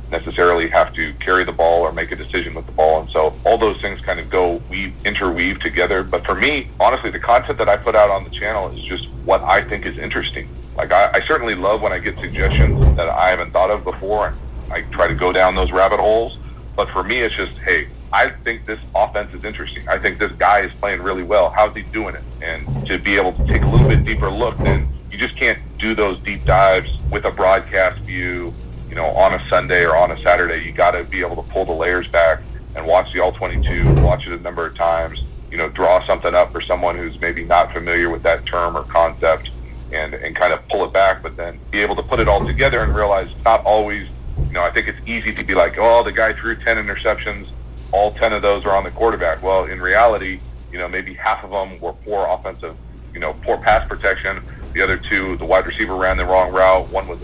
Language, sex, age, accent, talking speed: English, male, 40-59, American, 245 wpm